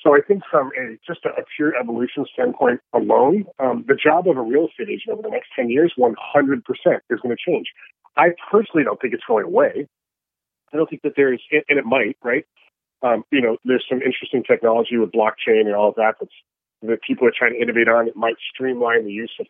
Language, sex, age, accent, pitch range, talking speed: English, male, 40-59, American, 115-150 Hz, 220 wpm